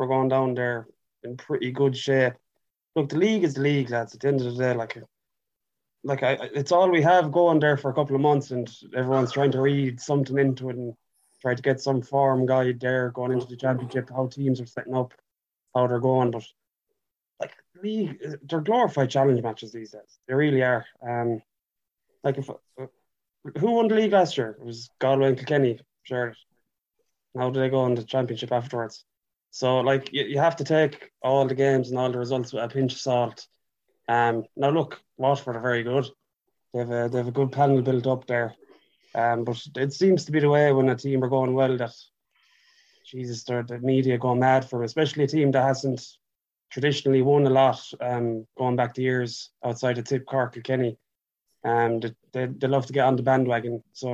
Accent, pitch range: Irish, 125-140 Hz